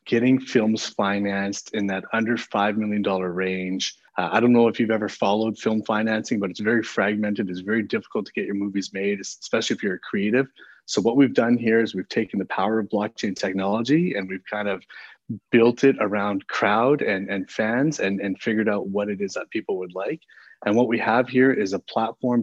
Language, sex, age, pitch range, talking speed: English, male, 30-49, 100-115 Hz, 210 wpm